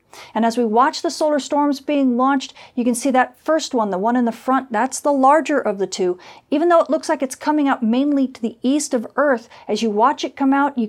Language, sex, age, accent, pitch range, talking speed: English, female, 40-59, American, 220-275 Hz, 260 wpm